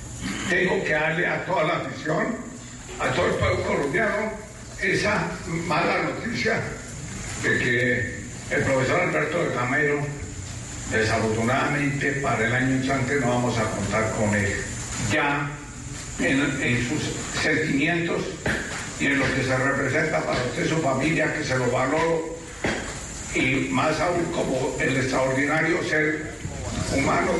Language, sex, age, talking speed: Spanish, male, 60-79, 130 wpm